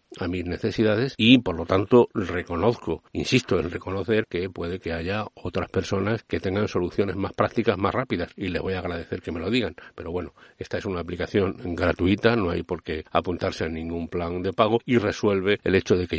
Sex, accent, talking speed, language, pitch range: male, Spanish, 210 wpm, Spanish, 85-100 Hz